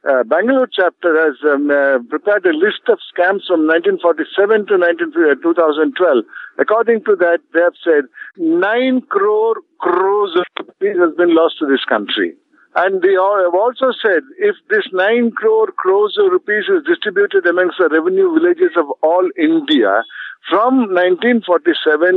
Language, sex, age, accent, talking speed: English, male, 50-69, Indian, 150 wpm